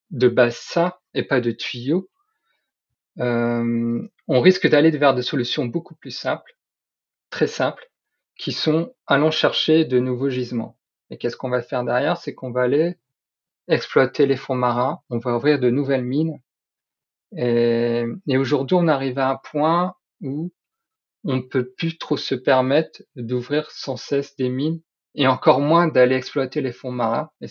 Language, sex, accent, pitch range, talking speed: French, male, French, 125-160 Hz, 165 wpm